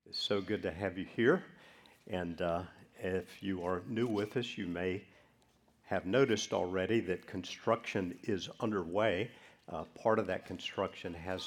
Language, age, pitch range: English, 50-69, 90-115 Hz